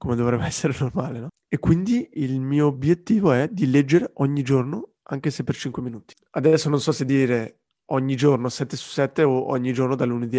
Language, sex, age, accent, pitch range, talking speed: Italian, male, 20-39, native, 120-140 Hz, 200 wpm